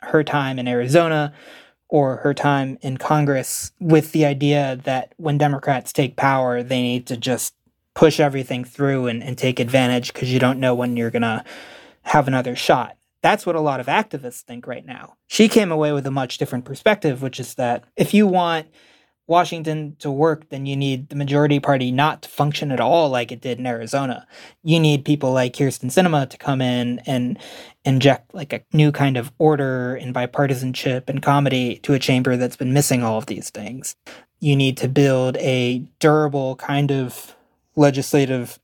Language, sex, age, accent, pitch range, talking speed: English, male, 20-39, American, 125-150 Hz, 190 wpm